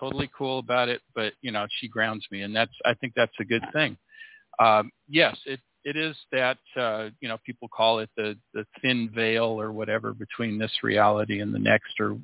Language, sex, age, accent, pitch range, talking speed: English, male, 50-69, American, 110-135 Hz, 210 wpm